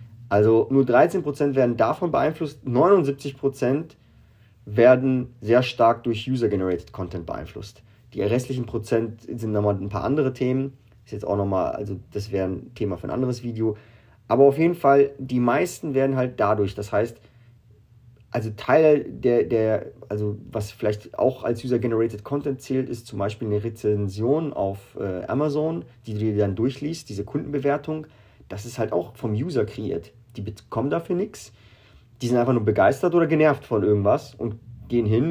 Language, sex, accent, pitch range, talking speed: German, male, German, 105-135 Hz, 165 wpm